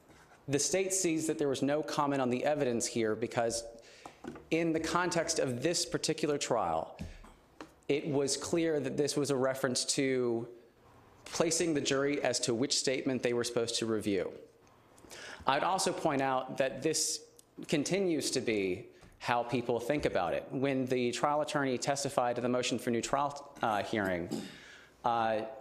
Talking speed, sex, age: 160 wpm, male, 30-49